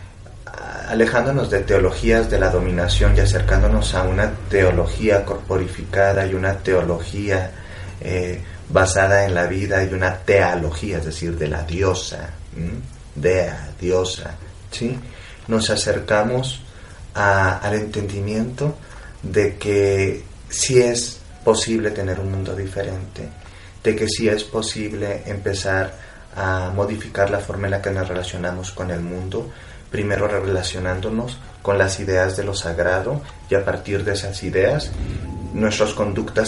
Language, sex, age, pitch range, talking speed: Spanish, male, 30-49, 90-105 Hz, 135 wpm